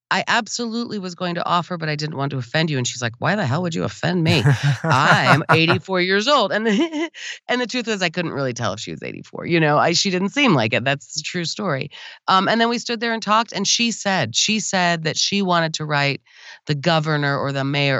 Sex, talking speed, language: female, 245 wpm, English